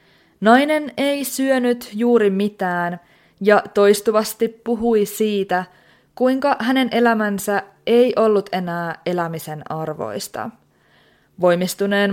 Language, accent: Finnish, native